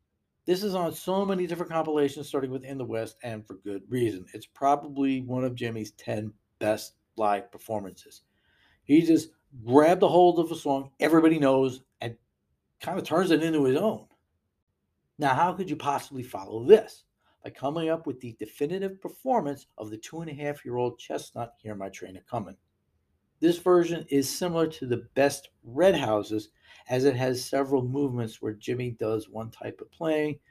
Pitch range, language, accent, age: 115-160 Hz, English, American, 50-69